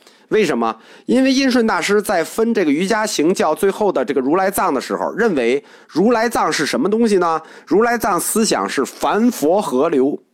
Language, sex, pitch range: Chinese, male, 155-240 Hz